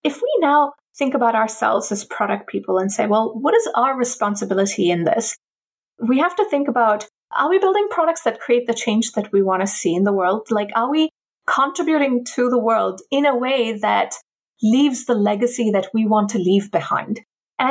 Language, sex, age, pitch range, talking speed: English, female, 30-49, 200-260 Hz, 205 wpm